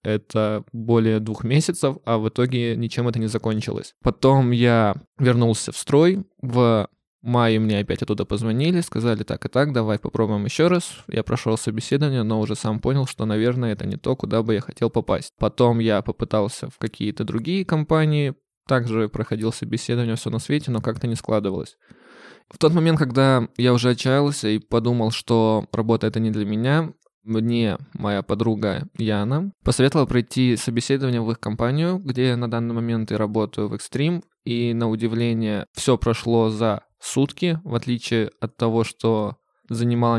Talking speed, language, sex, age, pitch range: 165 wpm, Russian, male, 20-39, 110-130 Hz